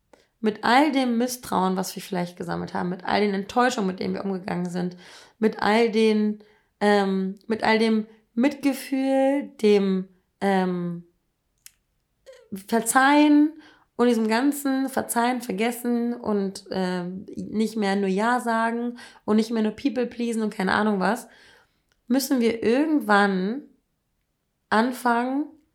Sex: female